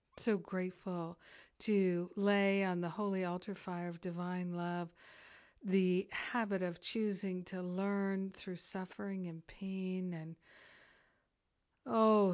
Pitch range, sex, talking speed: 180-200 Hz, female, 115 wpm